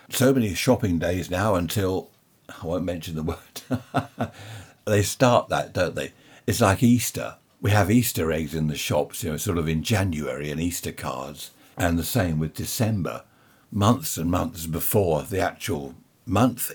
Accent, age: British, 60-79